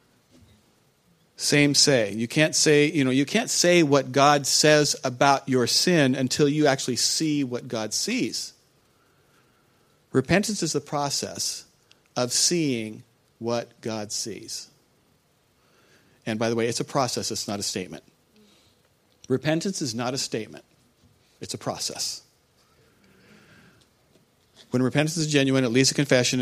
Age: 40-59